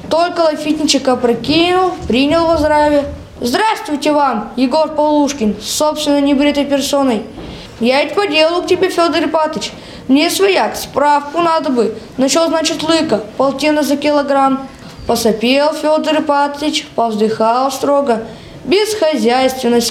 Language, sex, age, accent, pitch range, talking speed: Russian, female, 20-39, native, 255-315 Hz, 115 wpm